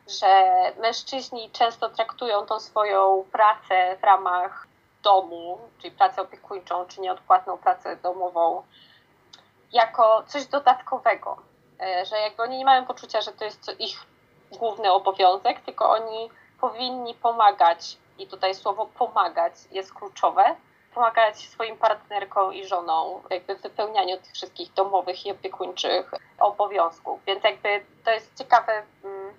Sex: female